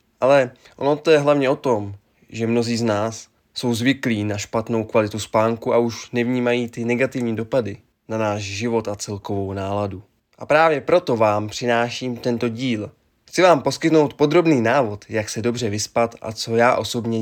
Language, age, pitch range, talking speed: Czech, 20-39, 105-125 Hz, 170 wpm